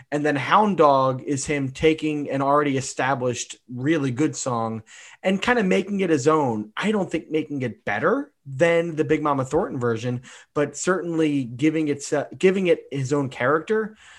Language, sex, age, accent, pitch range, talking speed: English, male, 30-49, American, 130-160 Hz, 175 wpm